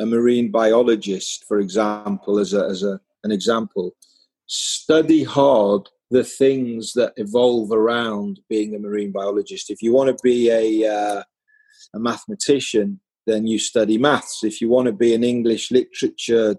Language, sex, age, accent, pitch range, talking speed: English, male, 40-59, British, 110-150 Hz, 155 wpm